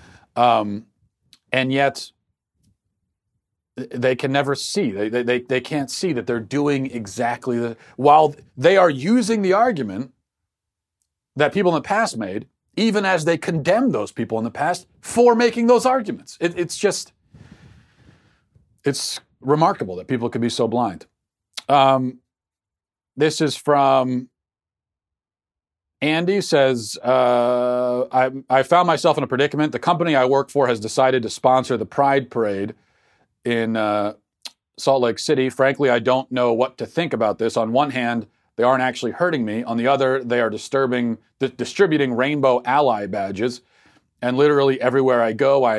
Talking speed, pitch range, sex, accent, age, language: 155 wpm, 115-145 Hz, male, American, 40-59, English